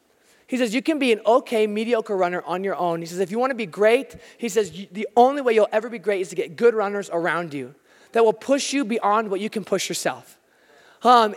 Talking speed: 250 wpm